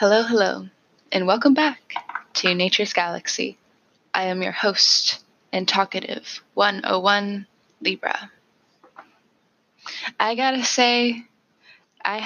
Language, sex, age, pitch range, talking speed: English, female, 10-29, 180-230 Hz, 100 wpm